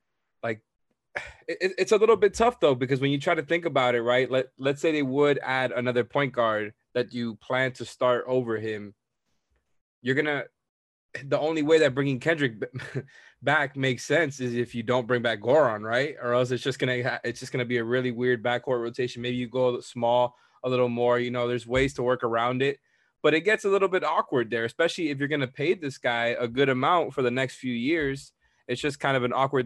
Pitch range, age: 115-135 Hz, 20-39